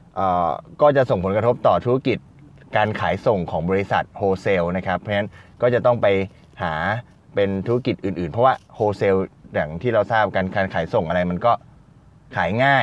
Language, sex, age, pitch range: Thai, male, 20-39, 90-115 Hz